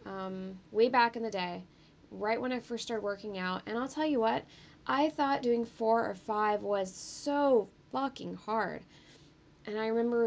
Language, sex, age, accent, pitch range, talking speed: English, female, 10-29, American, 195-240 Hz, 180 wpm